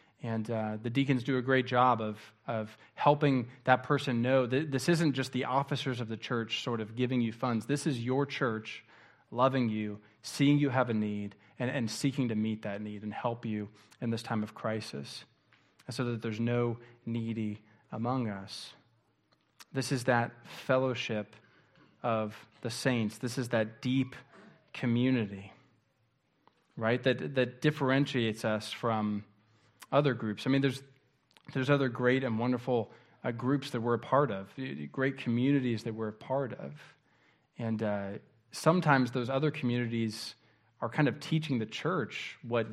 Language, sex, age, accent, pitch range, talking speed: English, male, 20-39, American, 110-130 Hz, 165 wpm